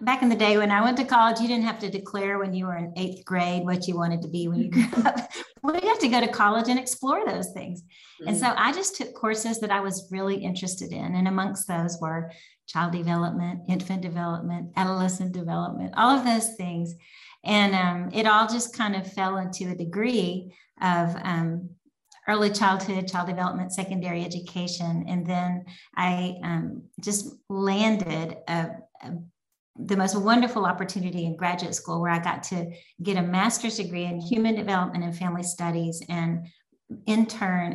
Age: 40-59